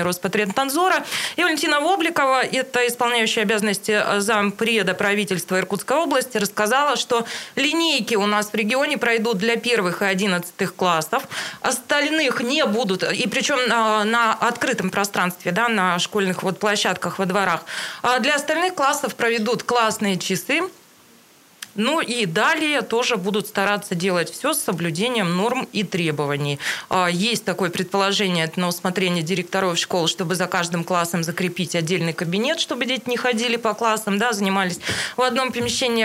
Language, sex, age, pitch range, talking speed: Russian, female, 20-39, 190-250 Hz, 140 wpm